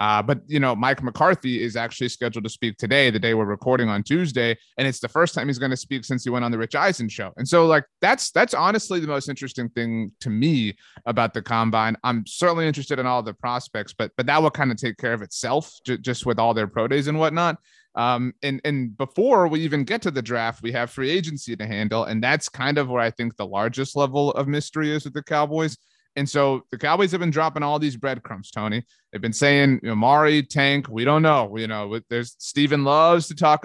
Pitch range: 115-150 Hz